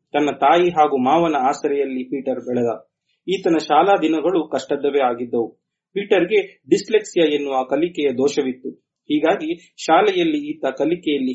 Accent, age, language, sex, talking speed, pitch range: native, 30-49, Kannada, male, 110 wpm, 135-180 Hz